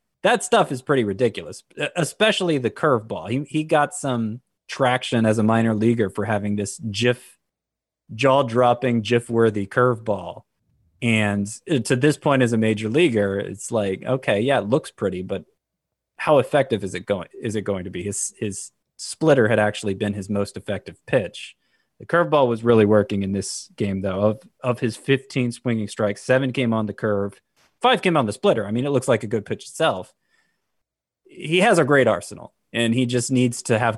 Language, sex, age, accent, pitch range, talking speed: English, male, 20-39, American, 105-130 Hz, 190 wpm